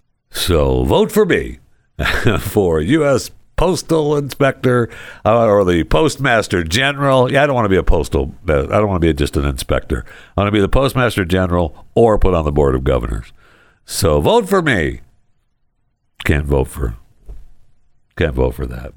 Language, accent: English, American